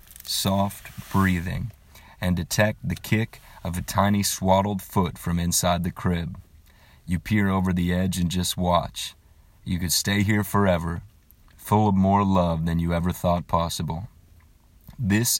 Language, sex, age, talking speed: English, male, 30-49, 150 wpm